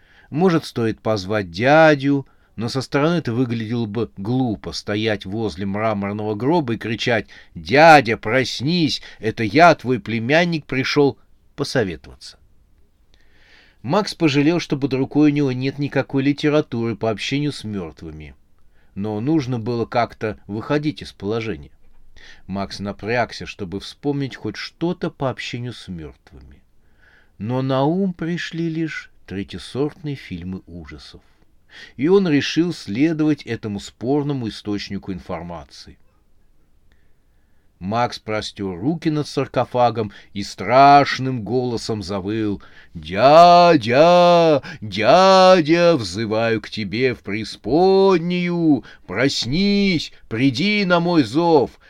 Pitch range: 100-145 Hz